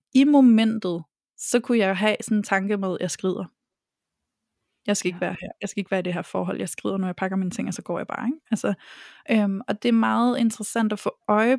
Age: 20-39